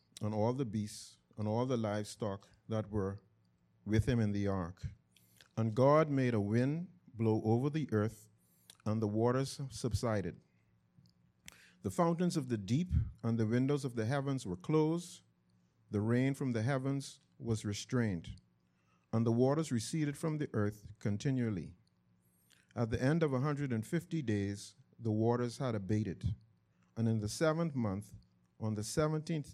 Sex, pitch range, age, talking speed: male, 100-130 Hz, 50-69, 150 wpm